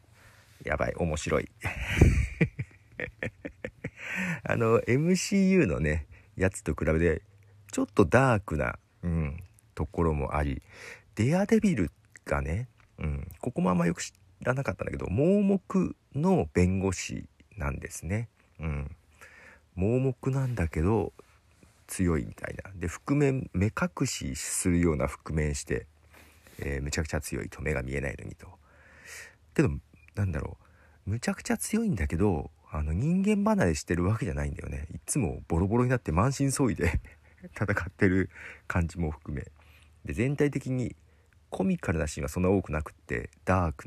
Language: Japanese